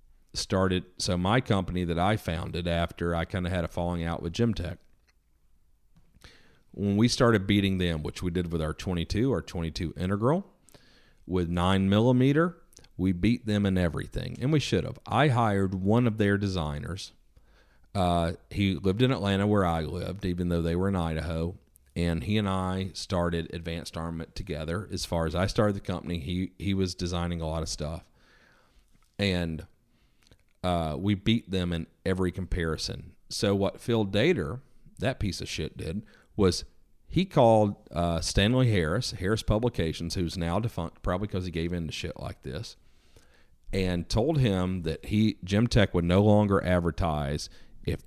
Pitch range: 85-105 Hz